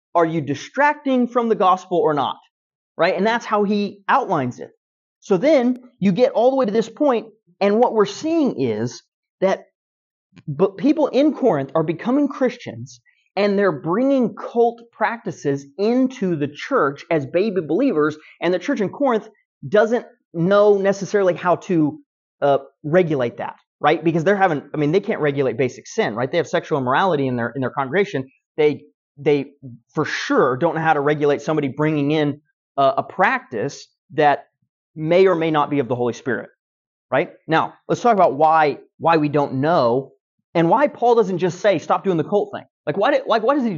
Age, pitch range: 30-49, 150-235 Hz